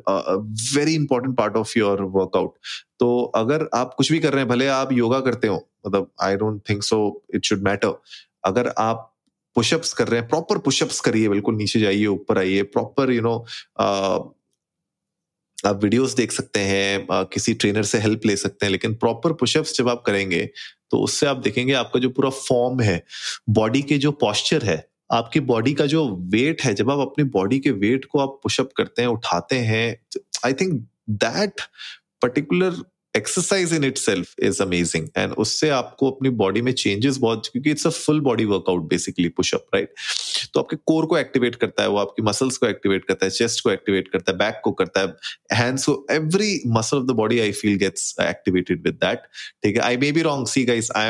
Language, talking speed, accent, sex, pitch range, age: Hindi, 160 wpm, native, male, 105-135 Hz, 30-49